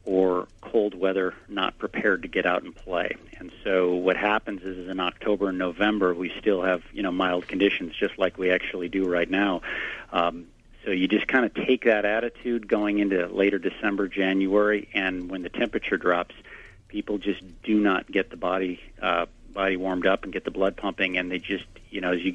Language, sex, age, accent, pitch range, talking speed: English, male, 50-69, American, 90-100 Hz, 200 wpm